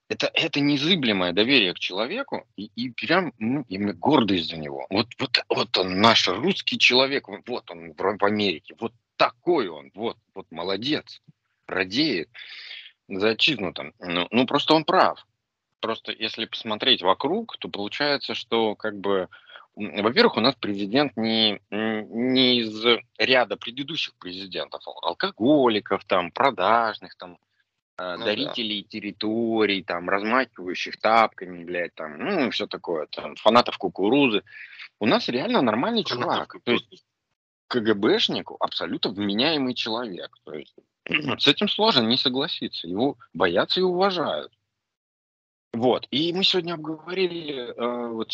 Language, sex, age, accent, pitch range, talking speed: Russian, male, 30-49, native, 100-145 Hz, 130 wpm